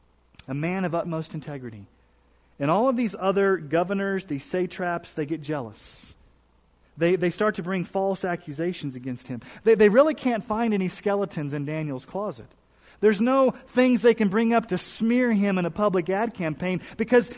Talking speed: 175 wpm